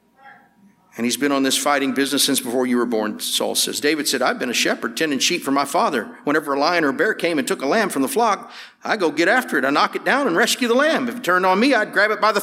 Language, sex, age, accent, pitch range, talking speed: English, male, 50-69, American, 245-325 Hz, 300 wpm